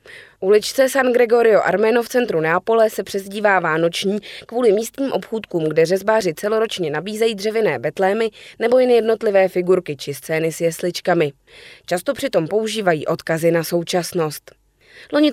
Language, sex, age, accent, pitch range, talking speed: Czech, female, 20-39, native, 170-225 Hz, 135 wpm